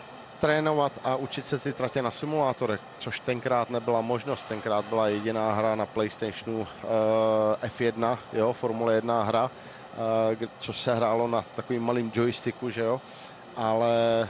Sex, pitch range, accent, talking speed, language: male, 115-130 Hz, native, 150 wpm, Czech